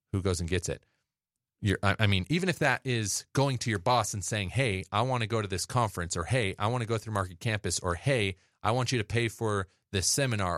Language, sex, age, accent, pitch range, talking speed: English, male, 30-49, American, 85-115 Hz, 255 wpm